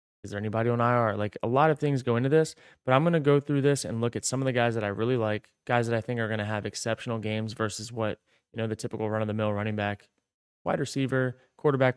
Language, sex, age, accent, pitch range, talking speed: English, male, 20-39, American, 105-130 Hz, 270 wpm